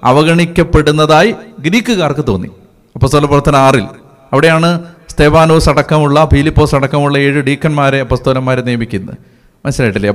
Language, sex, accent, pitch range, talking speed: Malayalam, male, native, 125-170 Hz, 95 wpm